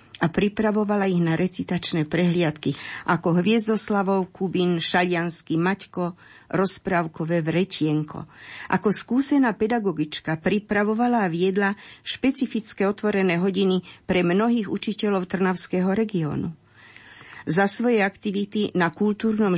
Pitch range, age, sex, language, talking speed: 165-200 Hz, 50-69, female, Slovak, 100 wpm